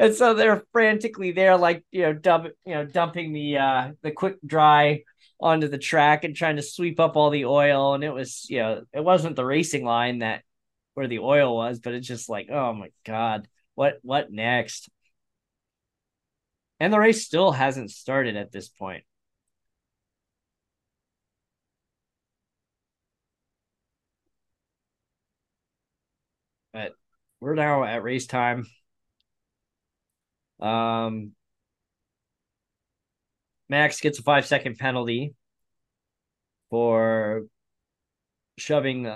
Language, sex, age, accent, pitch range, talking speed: English, male, 20-39, American, 115-150 Hz, 120 wpm